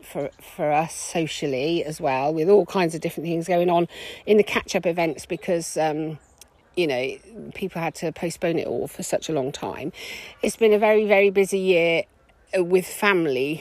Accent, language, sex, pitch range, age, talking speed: British, English, female, 160-205 Hz, 40-59, 185 wpm